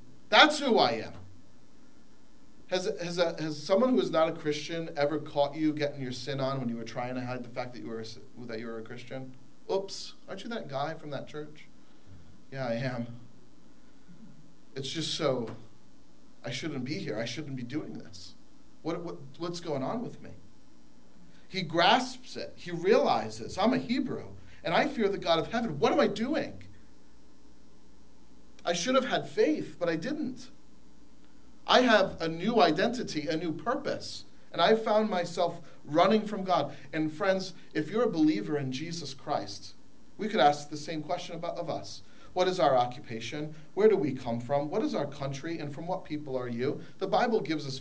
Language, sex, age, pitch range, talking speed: English, male, 40-59, 130-185 Hz, 190 wpm